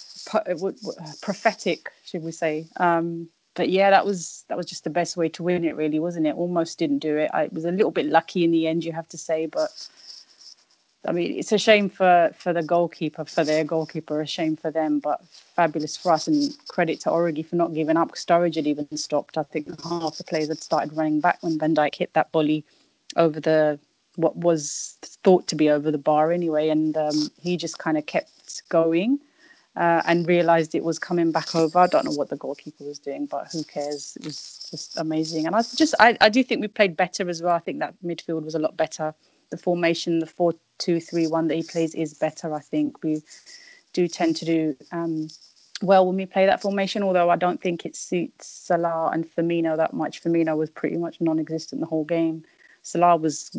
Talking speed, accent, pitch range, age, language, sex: 215 wpm, British, 155-175 Hz, 30-49, English, female